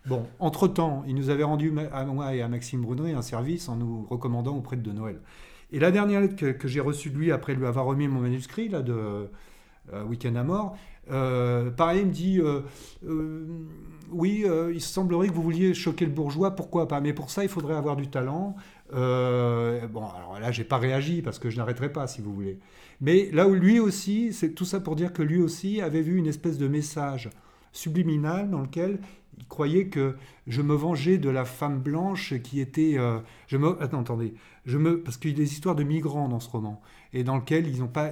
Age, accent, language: 40-59, French, French